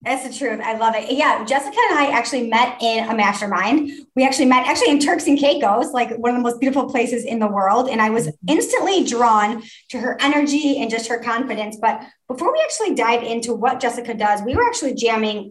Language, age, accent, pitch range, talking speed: English, 20-39, American, 210-260 Hz, 225 wpm